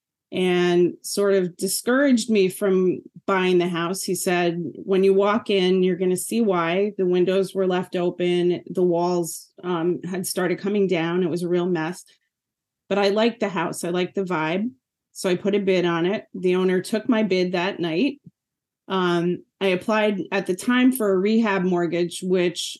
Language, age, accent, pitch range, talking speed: English, 30-49, American, 175-200 Hz, 185 wpm